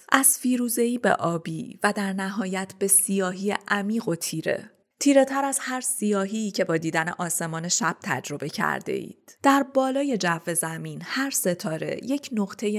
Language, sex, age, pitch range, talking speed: Persian, female, 30-49, 175-230 Hz, 155 wpm